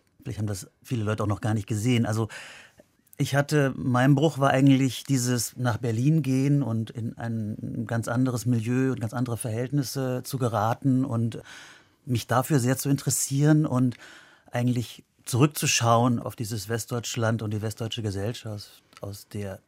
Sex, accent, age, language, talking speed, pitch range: male, German, 30-49, German, 150 wpm, 115-135 Hz